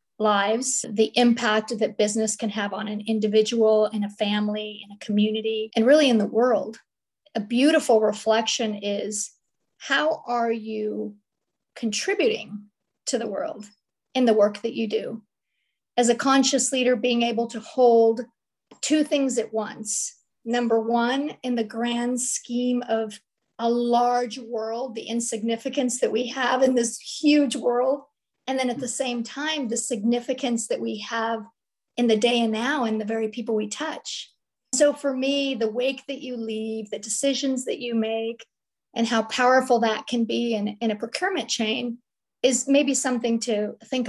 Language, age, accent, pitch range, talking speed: English, 40-59, American, 220-255 Hz, 165 wpm